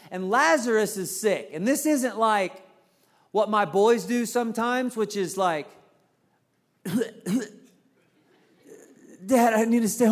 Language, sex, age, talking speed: English, male, 40-59, 125 wpm